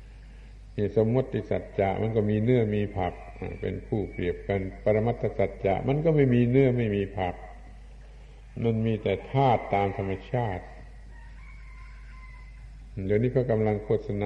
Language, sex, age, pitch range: Thai, male, 60-79, 95-125 Hz